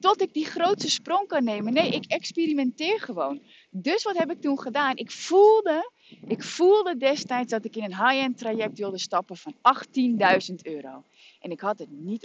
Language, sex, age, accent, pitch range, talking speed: Dutch, female, 30-49, Dutch, 205-295 Hz, 185 wpm